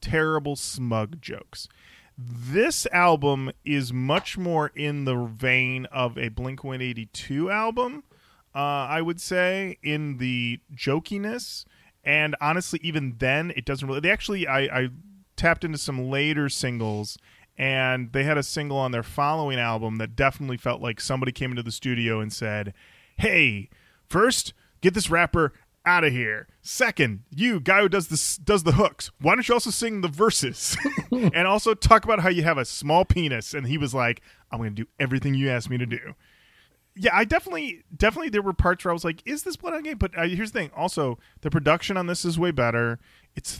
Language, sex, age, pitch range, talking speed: English, male, 30-49, 125-185 Hz, 185 wpm